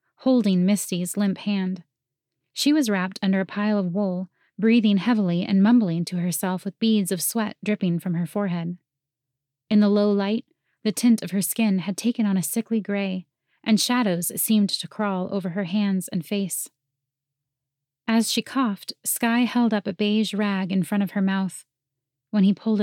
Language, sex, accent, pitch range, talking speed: English, female, American, 165-215 Hz, 180 wpm